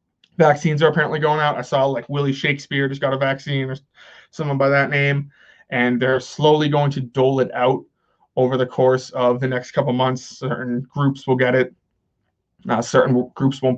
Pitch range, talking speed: 130-150 Hz, 190 wpm